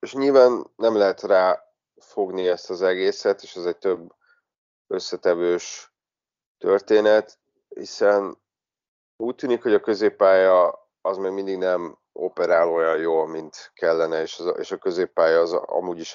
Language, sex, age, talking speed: Hungarian, male, 30-49, 135 wpm